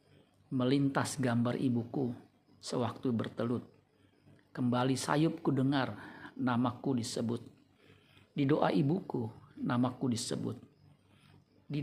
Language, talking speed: Indonesian, 85 wpm